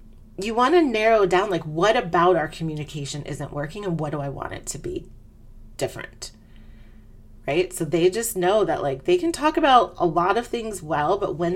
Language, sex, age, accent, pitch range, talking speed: English, female, 30-49, American, 145-230 Hz, 205 wpm